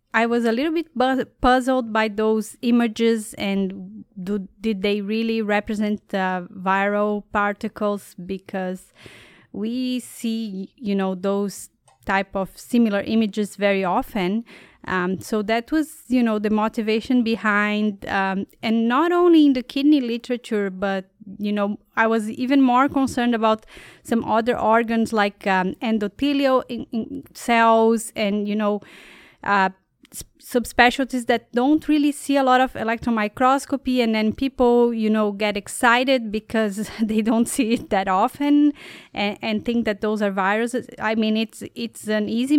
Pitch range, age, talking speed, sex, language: 200-240 Hz, 20-39, 145 wpm, female, English